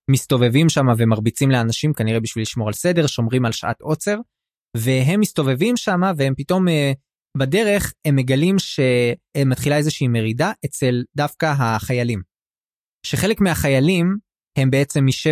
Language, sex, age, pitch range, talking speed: Hebrew, male, 20-39, 120-165 Hz, 120 wpm